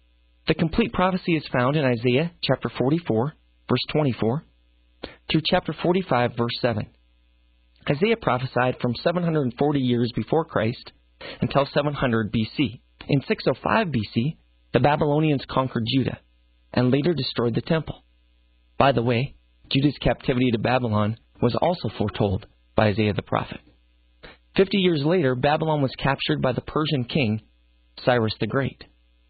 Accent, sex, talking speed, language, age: American, male, 135 wpm, English, 30-49